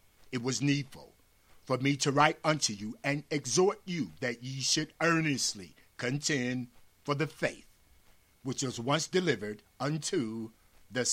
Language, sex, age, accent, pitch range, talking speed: English, male, 50-69, American, 95-145 Hz, 140 wpm